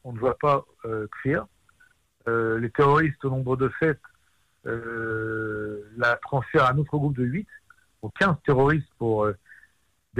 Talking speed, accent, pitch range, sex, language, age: 160 wpm, French, 110-140 Hz, male, Hebrew, 60-79